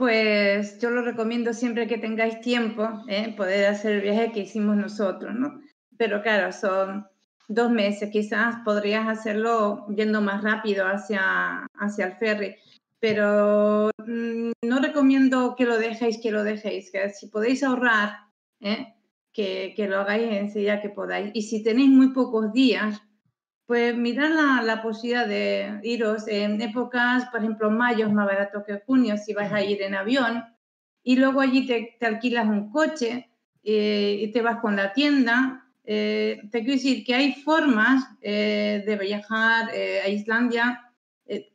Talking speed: 160 wpm